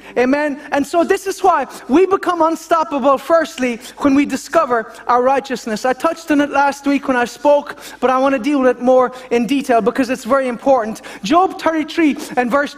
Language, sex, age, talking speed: English, male, 30-49, 195 wpm